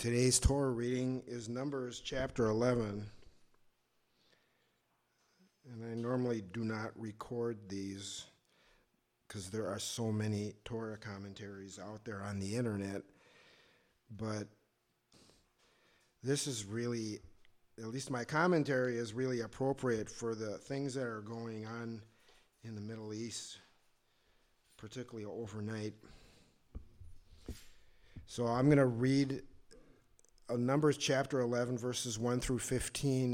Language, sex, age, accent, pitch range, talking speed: English, male, 50-69, American, 105-125 Hz, 110 wpm